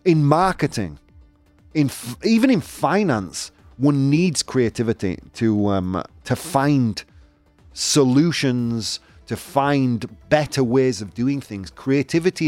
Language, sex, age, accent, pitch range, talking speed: English, male, 30-49, British, 90-145 Hz, 110 wpm